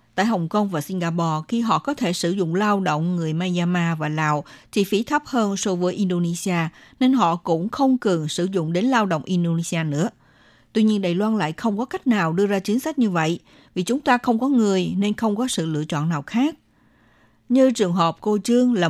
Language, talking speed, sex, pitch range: Vietnamese, 225 wpm, female, 170-225 Hz